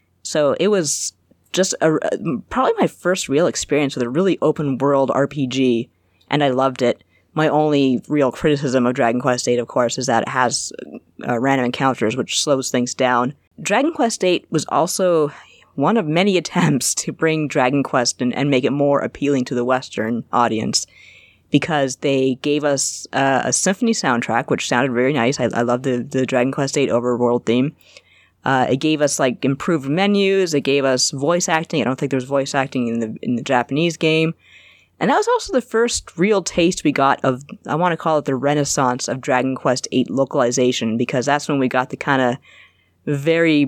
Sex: female